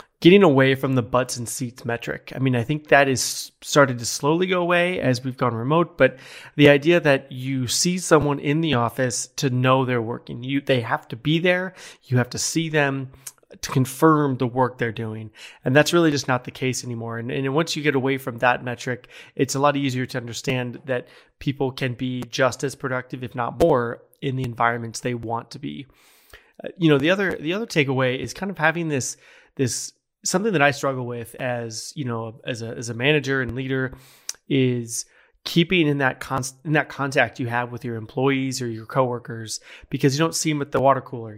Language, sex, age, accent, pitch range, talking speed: English, male, 30-49, American, 125-150 Hz, 215 wpm